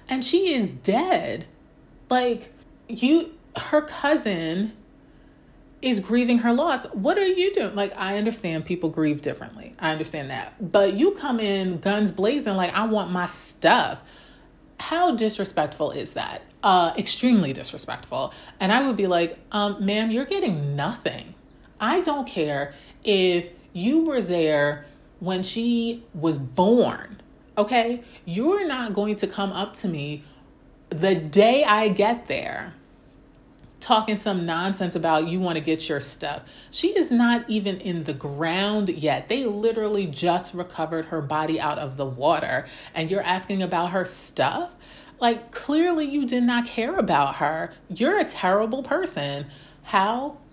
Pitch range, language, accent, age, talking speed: 170-240 Hz, English, American, 30-49, 150 wpm